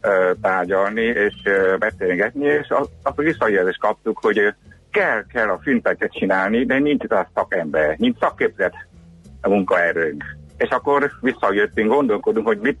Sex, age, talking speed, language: male, 60-79, 130 wpm, Hungarian